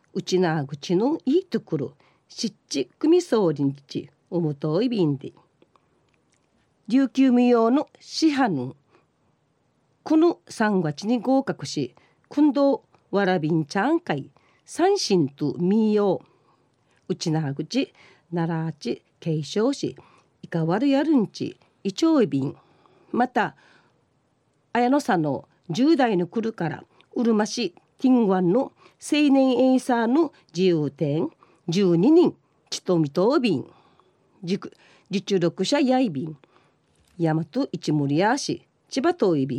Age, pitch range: 40-59, 155-255 Hz